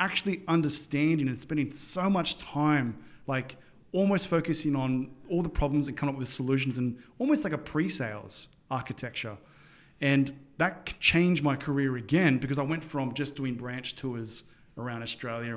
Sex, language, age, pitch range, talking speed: male, English, 20-39, 125-150 Hz, 160 wpm